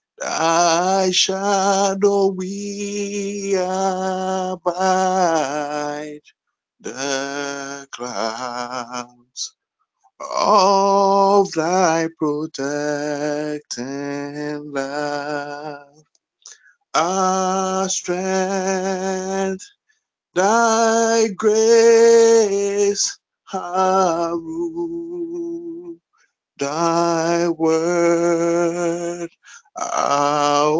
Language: English